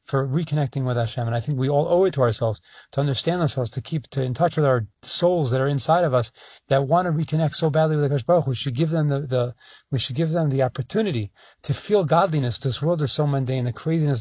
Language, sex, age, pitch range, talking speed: English, male, 30-49, 130-165 Hz, 250 wpm